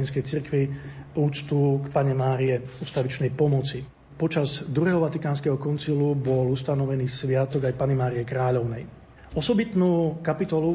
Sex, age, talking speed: male, 40-59, 110 wpm